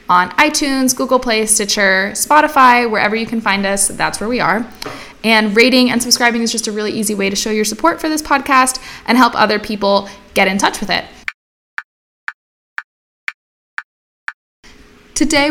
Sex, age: female, 10-29